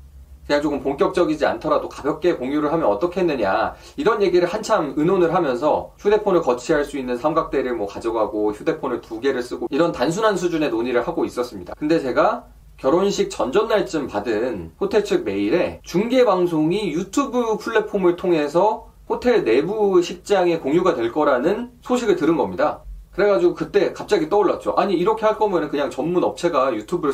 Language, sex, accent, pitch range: Korean, male, native, 145-220 Hz